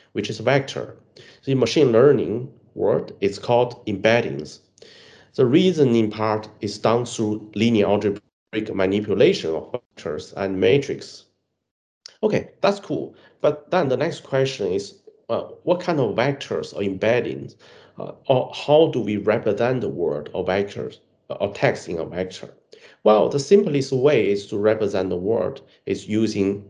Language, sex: English, male